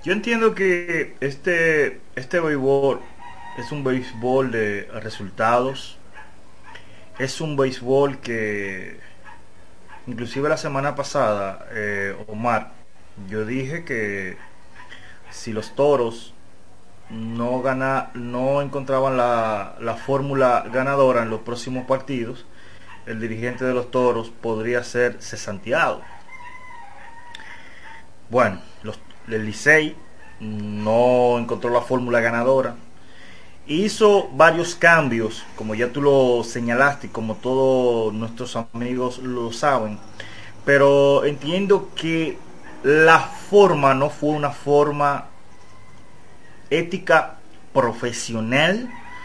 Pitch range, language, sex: 115-145 Hz, Spanish, male